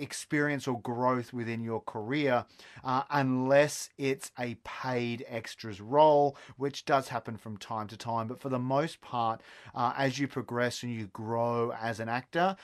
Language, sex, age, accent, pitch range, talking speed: English, male, 30-49, Australian, 110-130 Hz, 165 wpm